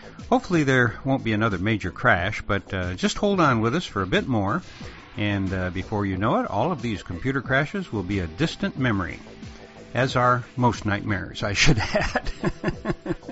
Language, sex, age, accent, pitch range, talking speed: English, male, 60-79, American, 105-155 Hz, 185 wpm